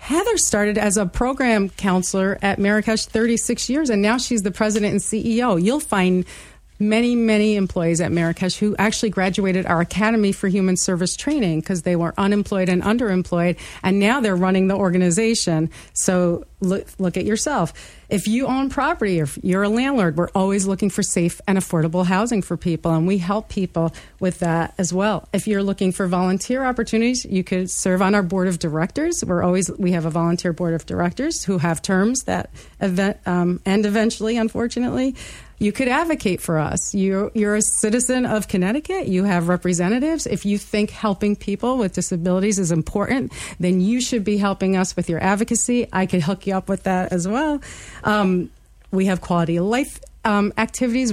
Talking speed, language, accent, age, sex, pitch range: 185 wpm, English, American, 40-59, female, 180-225 Hz